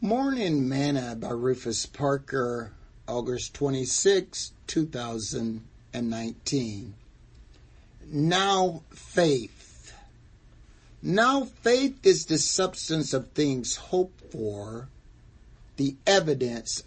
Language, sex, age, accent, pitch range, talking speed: English, male, 60-79, American, 120-165 Hz, 75 wpm